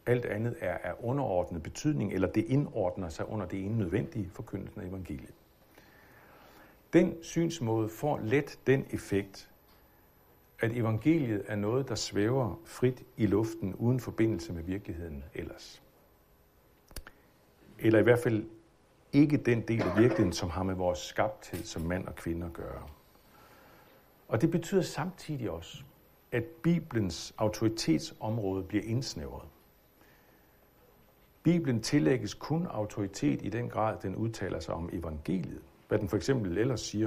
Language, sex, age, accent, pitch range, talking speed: Danish, male, 60-79, native, 85-120 Hz, 140 wpm